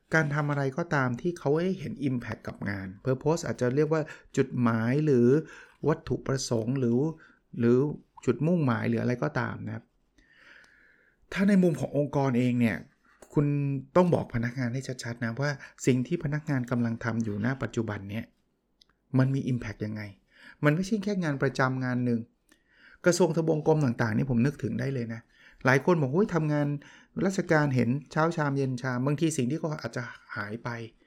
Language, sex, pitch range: Thai, male, 120-150 Hz